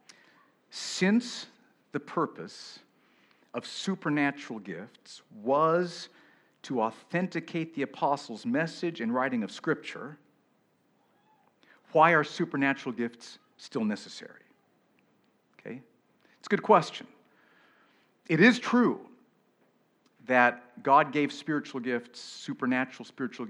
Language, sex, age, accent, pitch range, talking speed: English, male, 50-69, American, 130-195 Hz, 95 wpm